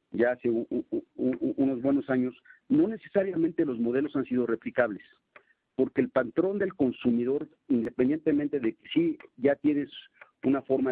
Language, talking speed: Spanish, 135 wpm